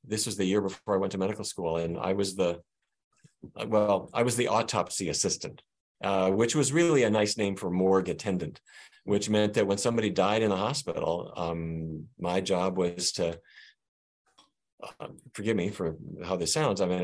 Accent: American